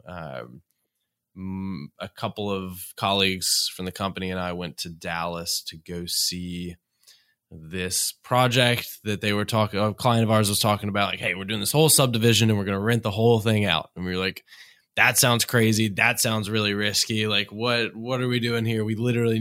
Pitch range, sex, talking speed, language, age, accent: 95-115 Hz, male, 200 wpm, English, 20-39, American